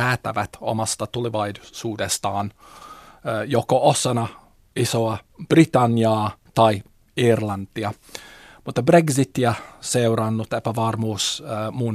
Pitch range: 110-120 Hz